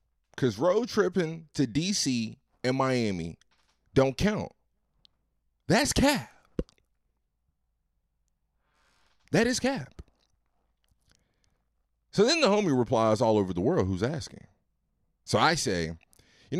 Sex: male